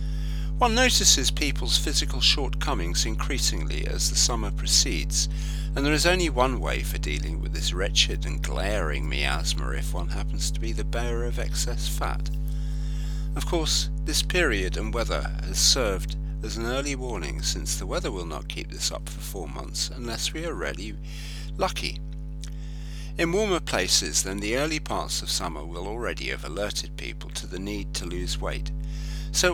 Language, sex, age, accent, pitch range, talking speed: English, male, 50-69, British, 145-150 Hz, 170 wpm